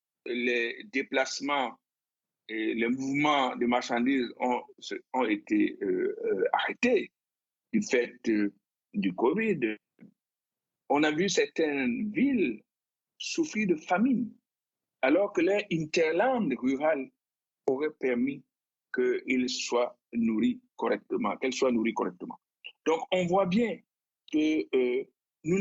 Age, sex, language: 60-79, male, French